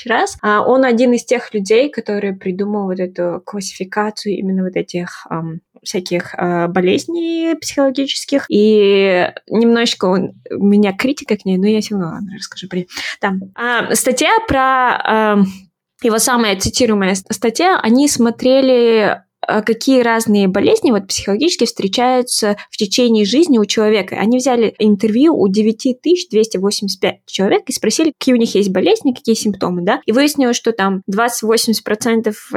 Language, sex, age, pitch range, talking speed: Russian, female, 20-39, 200-240 Hz, 135 wpm